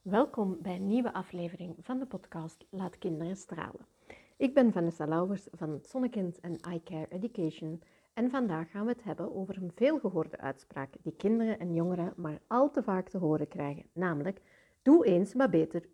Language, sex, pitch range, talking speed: Dutch, female, 165-235 Hz, 175 wpm